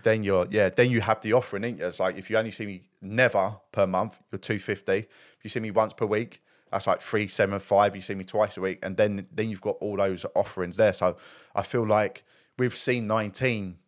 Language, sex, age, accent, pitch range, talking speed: English, male, 20-39, British, 100-125 Hz, 240 wpm